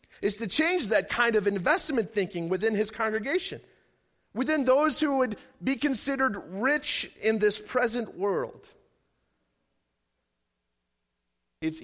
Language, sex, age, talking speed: English, male, 40-59, 115 wpm